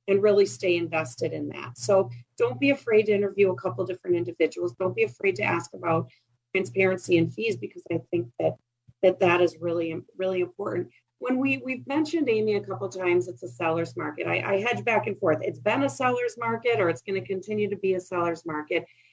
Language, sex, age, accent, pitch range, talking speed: English, female, 40-59, American, 155-195 Hz, 220 wpm